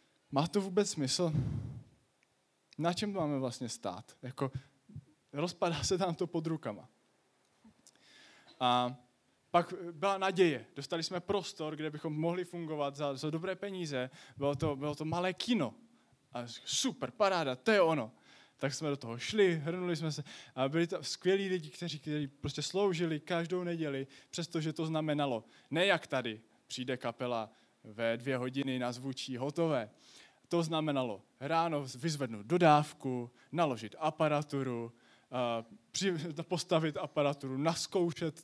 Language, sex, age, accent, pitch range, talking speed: English, male, 20-39, Czech, 135-180 Hz, 135 wpm